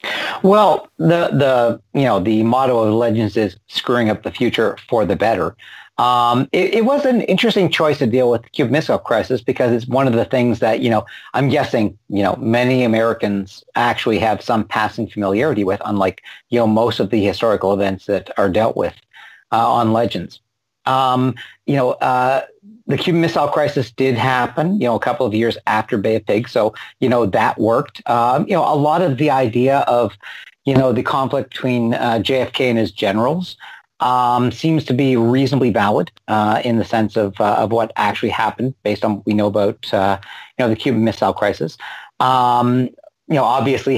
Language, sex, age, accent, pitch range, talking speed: English, male, 50-69, American, 105-130 Hz, 195 wpm